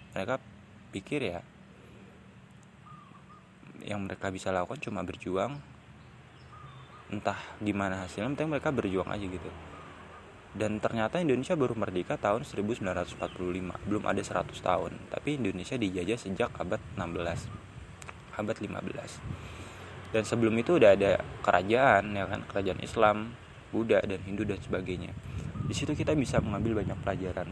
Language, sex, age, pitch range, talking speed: Indonesian, male, 20-39, 95-125 Hz, 120 wpm